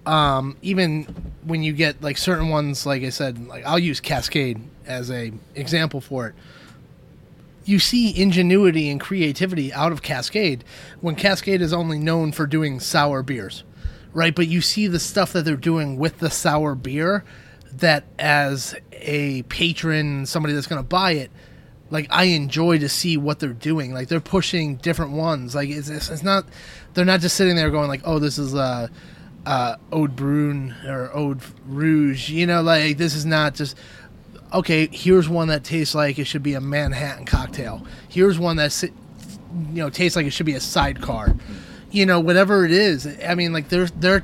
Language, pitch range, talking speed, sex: English, 145-175 Hz, 185 wpm, male